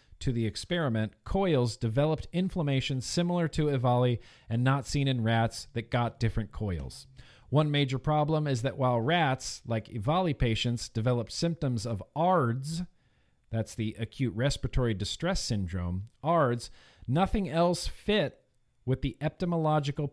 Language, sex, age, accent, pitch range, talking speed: English, male, 40-59, American, 120-155 Hz, 135 wpm